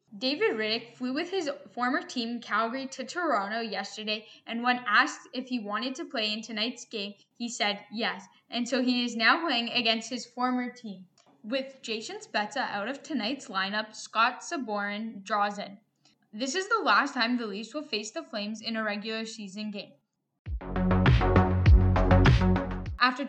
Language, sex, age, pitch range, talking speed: English, female, 10-29, 210-255 Hz, 160 wpm